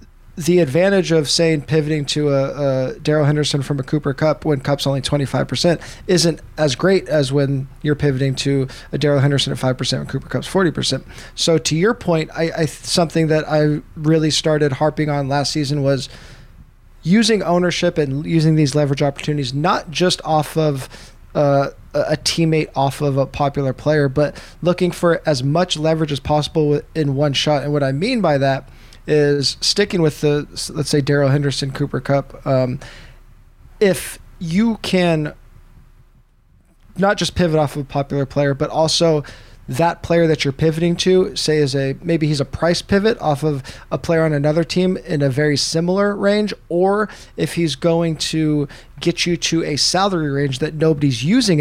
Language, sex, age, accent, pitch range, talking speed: English, male, 20-39, American, 140-165 Hz, 175 wpm